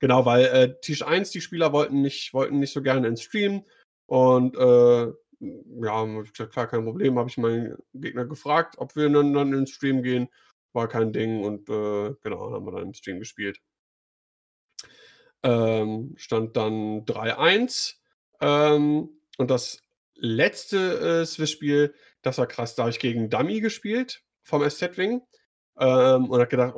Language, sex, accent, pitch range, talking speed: German, male, German, 115-150 Hz, 160 wpm